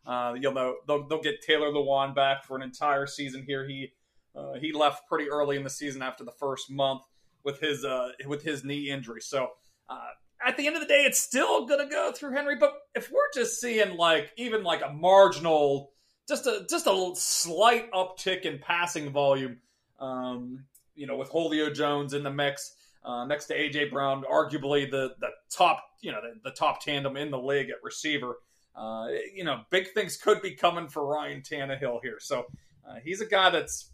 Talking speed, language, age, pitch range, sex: 200 wpm, English, 30-49, 135-170 Hz, male